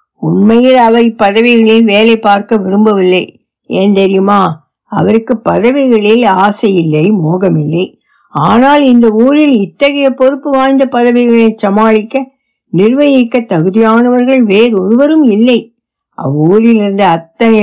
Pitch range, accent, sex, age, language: 195-240 Hz, native, female, 60-79, Tamil